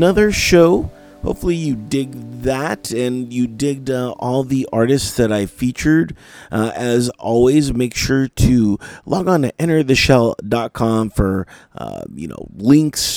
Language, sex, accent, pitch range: English, male, American, 100-130 Hz